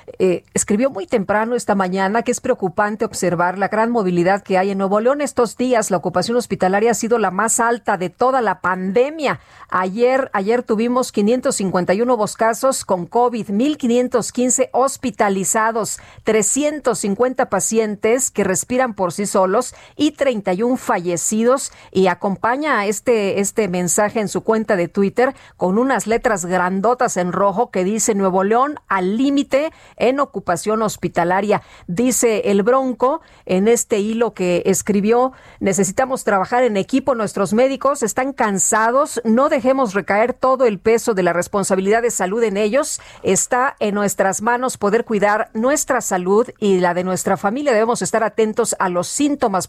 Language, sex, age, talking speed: Spanish, female, 40-59, 150 wpm